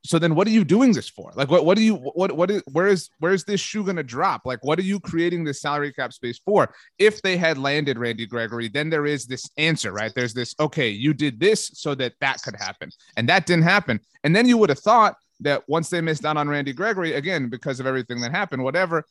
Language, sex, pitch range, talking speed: English, male, 125-170 Hz, 260 wpm